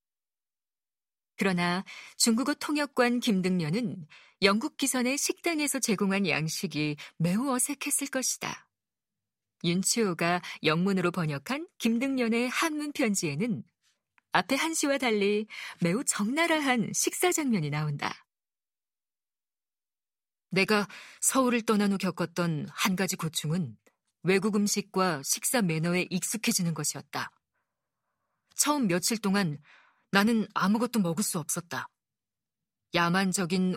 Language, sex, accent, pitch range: Korean, female, native, 175-240 Hz